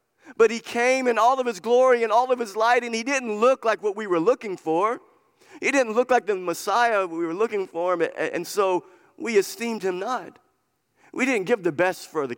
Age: 50-69